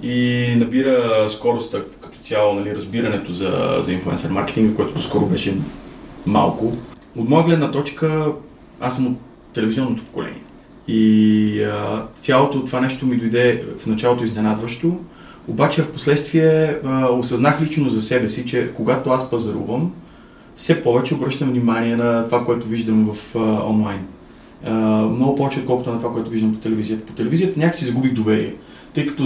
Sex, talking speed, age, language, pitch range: male, 155 wpm, 20-39, Bulgarian, 115-140 Hz